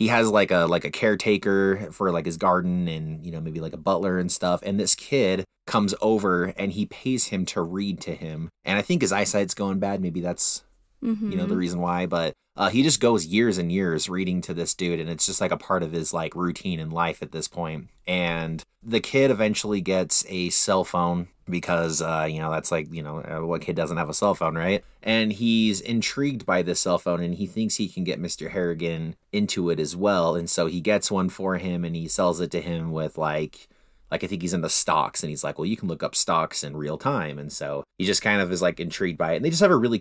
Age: 30-49